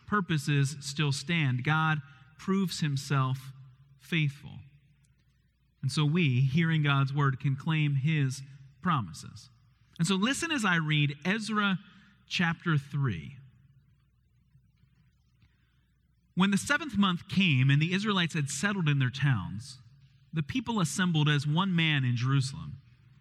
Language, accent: English, American